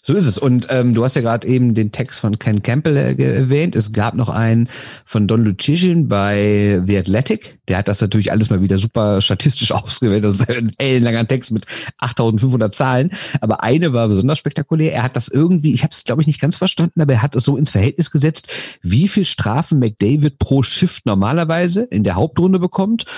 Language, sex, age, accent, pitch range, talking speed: German, male, 50-69, German, 110-155 Hz, 210 wpm